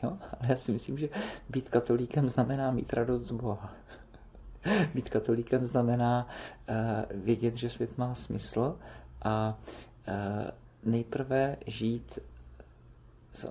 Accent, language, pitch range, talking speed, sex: native, Czech, 115-135 Hz, 105 wpm, male